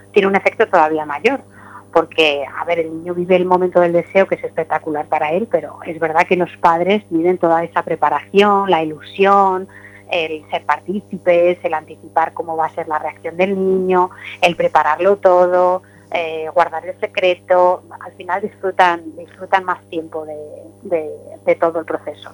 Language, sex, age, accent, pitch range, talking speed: Spanish, female, 30-49, Spanish, 155-185 Hz, 170 wpm